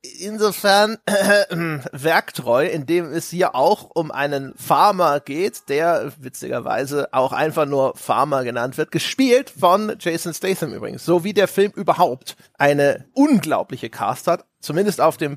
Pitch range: 155-200 Hz